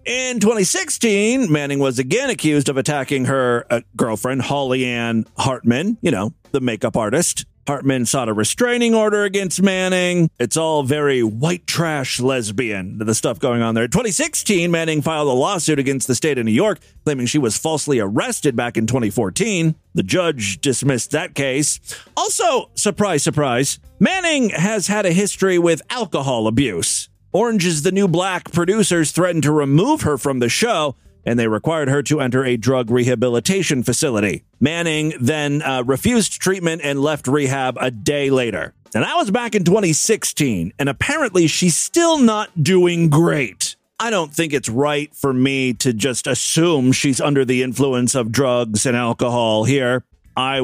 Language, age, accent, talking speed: English, 40-59, American, 165 wpm